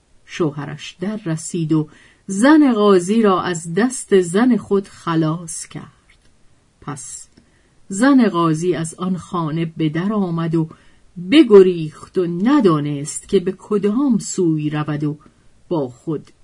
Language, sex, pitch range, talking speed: Persian, female, 155-210 Hz, 125 wpm